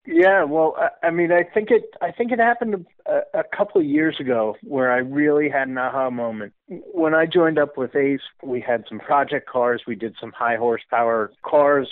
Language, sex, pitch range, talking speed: English, male, 125-175 Hz, 200 wpm